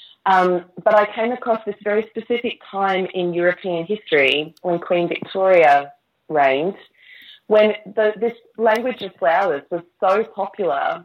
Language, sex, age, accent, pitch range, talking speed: English, female, 30-49, Australian, 160-210 Hz, 130 wpm